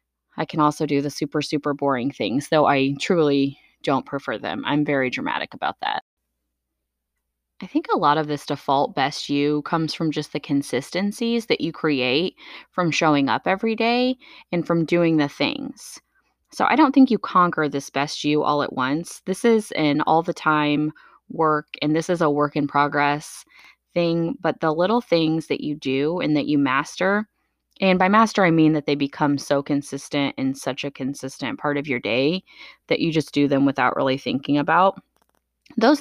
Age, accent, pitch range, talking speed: 20-39, American, 145-185 Hz, 190 wpm